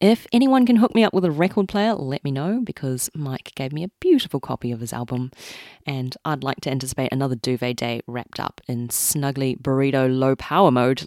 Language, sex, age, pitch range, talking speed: English, female, 30-49, 125-195 Hz, 210 wpm